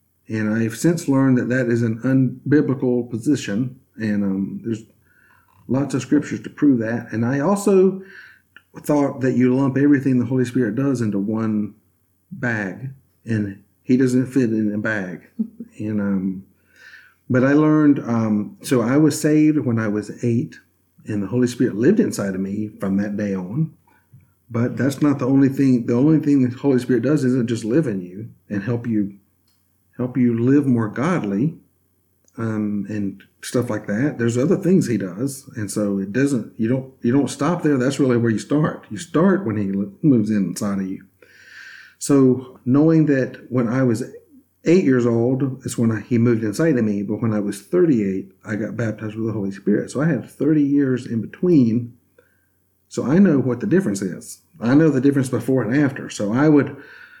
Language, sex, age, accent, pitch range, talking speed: English, male, 50-69, American, 105-140 Hz, 190 wpm